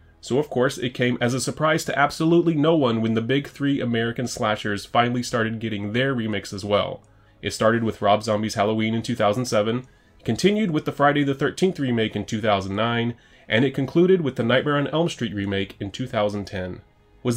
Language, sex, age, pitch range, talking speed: English, male, 30-49, 110-145 Hz, 190 wpm